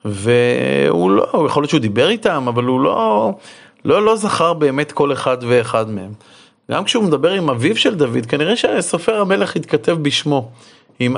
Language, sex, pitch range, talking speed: Hebrew, male, 115-155 Hz, 170 wpm